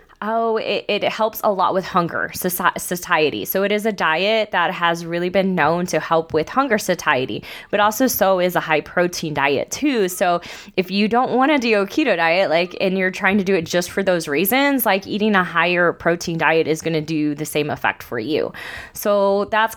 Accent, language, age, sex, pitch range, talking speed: American, English, 20-39, female, 170-210 Hz, 210 wpm